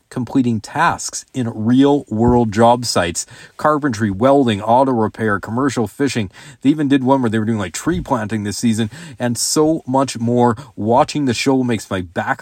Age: 40-59